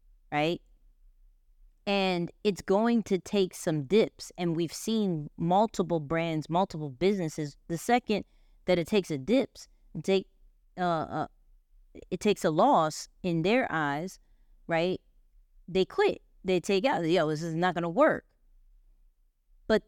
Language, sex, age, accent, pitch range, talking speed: English, female, 20-39, American, 165-225 Hz, 130 wpm